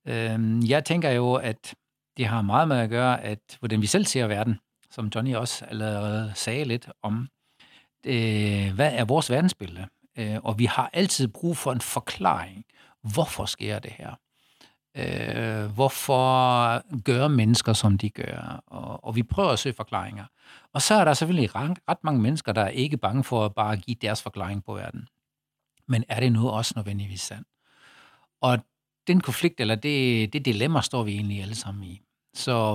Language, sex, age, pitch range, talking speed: Danish, male, 60-79, 110-130 Hz, 170 wpm